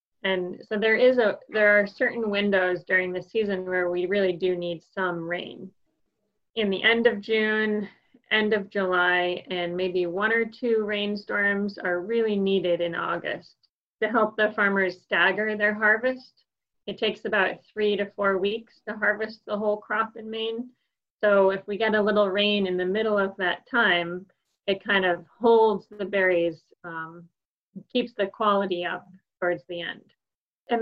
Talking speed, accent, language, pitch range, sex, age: 165 wpm, American, English, 180-215 Hz, female, 30-49